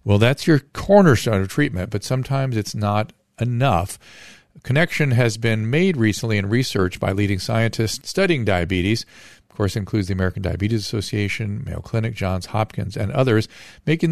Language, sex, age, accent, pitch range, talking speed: English, male, 50-69, American, 105-140 Hz, 165 wpm